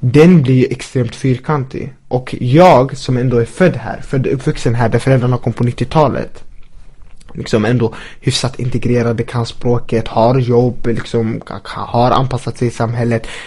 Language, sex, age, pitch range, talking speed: English, male, 20-39, 120-145 Hz, 160 wpm